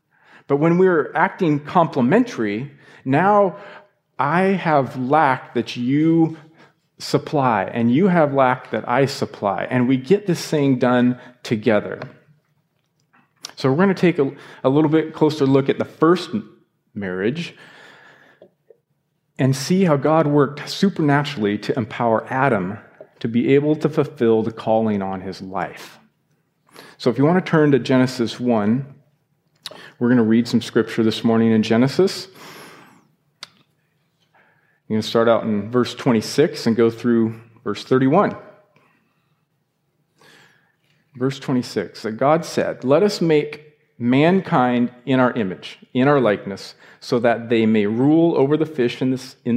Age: 40-59